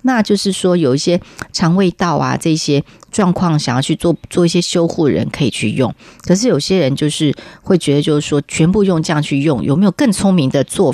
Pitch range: 140-185 Hz